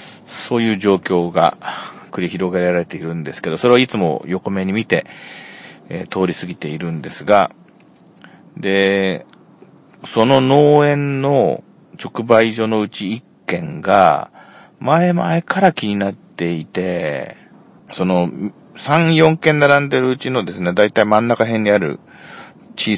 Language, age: Japanese, 40-59